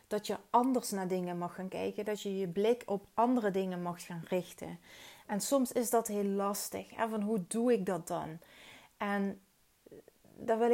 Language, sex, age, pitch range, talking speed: Dutch, female, 30-49, 175-210 Hz, 190 wpm